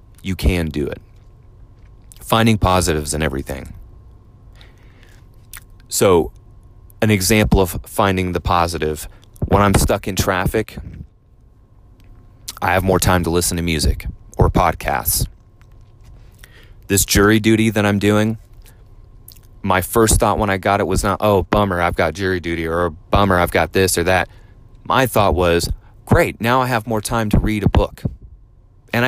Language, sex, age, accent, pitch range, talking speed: English, male, 30-49, American, 95-110 Hz, 150 wpm